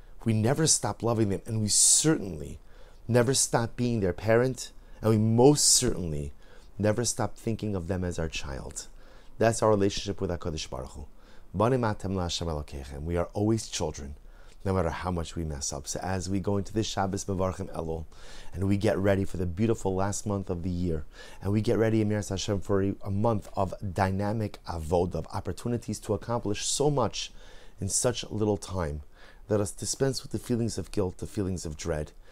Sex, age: male, 30-49